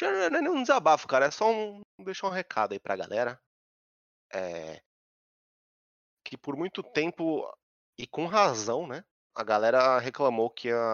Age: 30-49